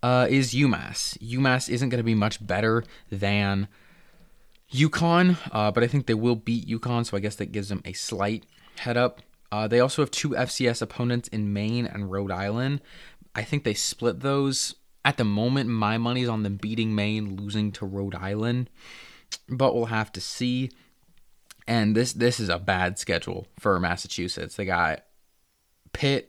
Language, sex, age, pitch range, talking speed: English, male, 20-39, 100-125 Hz, 175 wpm